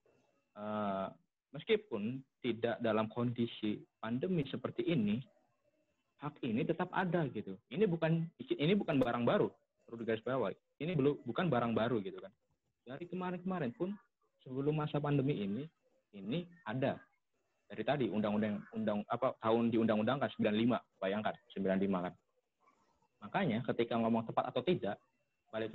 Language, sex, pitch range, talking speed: Indonesian, male, 110-145 Hz, 130 wpm